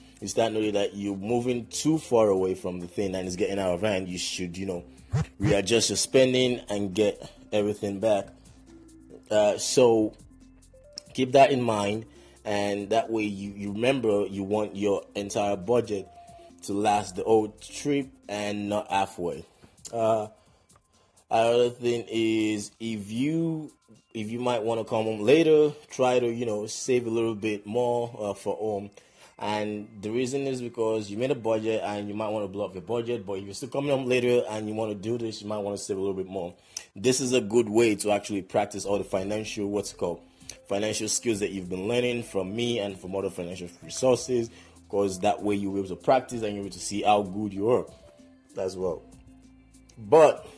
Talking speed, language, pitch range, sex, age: 200 wpm, English, 100-120 Hz, male, 20-39